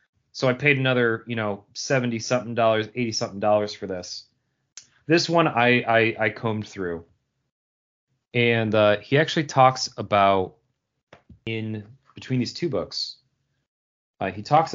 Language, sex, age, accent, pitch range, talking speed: English, male, 30-49, American, 105-140 Hz, 130 wpm